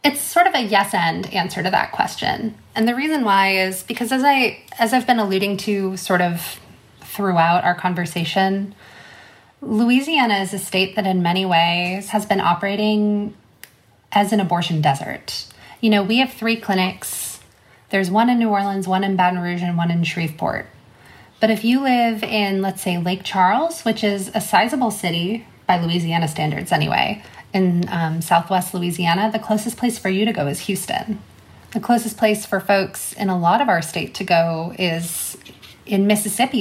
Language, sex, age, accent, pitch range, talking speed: English, female, 20-39, American, 175-225 Hz, 175 wpm